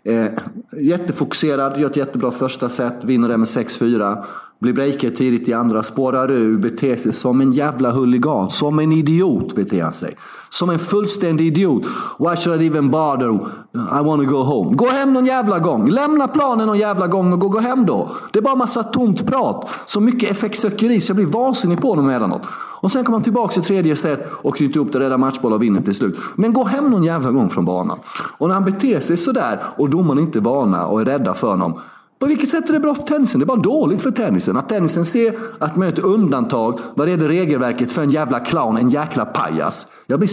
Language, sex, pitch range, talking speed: Swedish, male, 135-220 Hz, 220 wpm